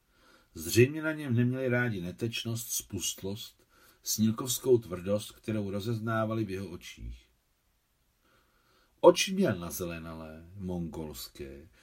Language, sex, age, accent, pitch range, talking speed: Czech, male, 50-69, native, 90-120 Hz, 95 wpm